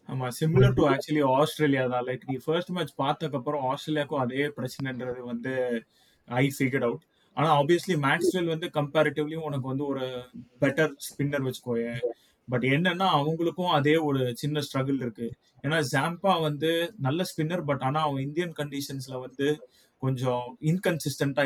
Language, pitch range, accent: Tamil, 130-160 Hz, native